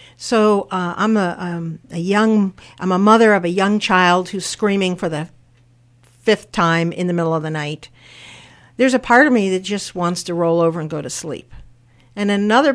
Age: 50-69